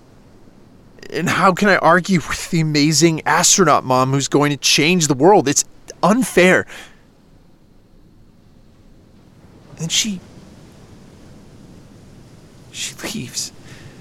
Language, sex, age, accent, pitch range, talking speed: English, male, 40-59, American, 105-135 Hz, 95 wpm